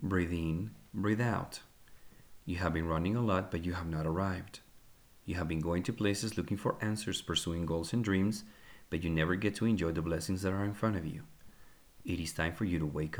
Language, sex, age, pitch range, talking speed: English, male, 40-59, 85-110 Hz, 225 wpm